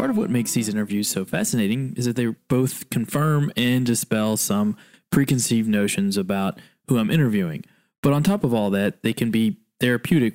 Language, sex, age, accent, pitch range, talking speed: English, male, 20-39, American, 110-150 Hz, 185 wpm